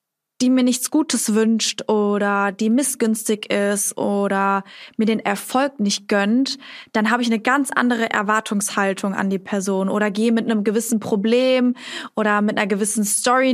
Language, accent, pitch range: German, German, 210-245 Hz